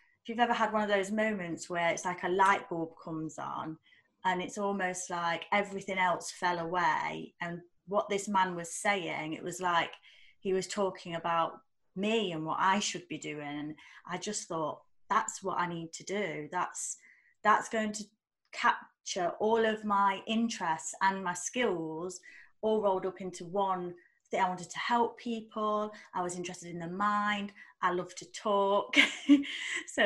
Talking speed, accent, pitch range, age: 170 wpm, British, 175-215 Hz, 30-49